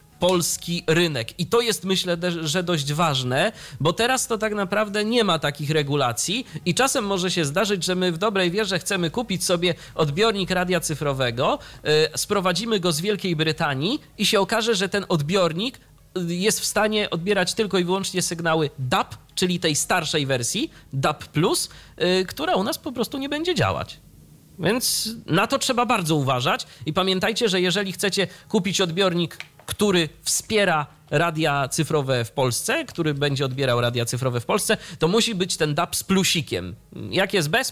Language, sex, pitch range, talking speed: Polish, male, 145-205 Hz, 165 wpm